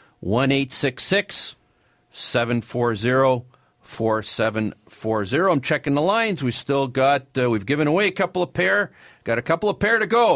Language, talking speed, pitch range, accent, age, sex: English, 140 wpm, 110-155 Hz, American, 50-69, male